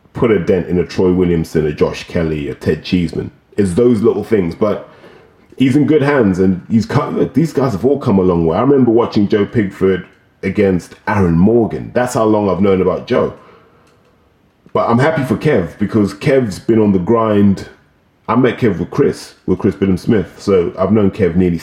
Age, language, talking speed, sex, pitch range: 30-49, English, 205 wpm, male, 90-110 Hz